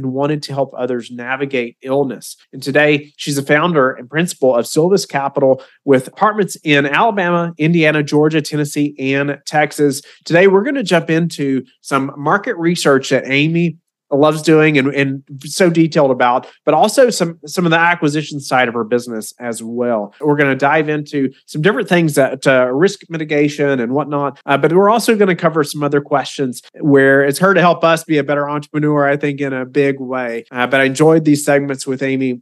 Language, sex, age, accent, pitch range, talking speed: English, male, 30-49, American, 125-150 Hz, 195 wpm